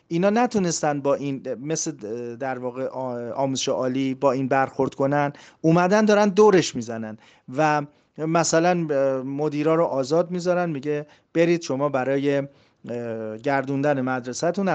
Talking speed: 120 wpm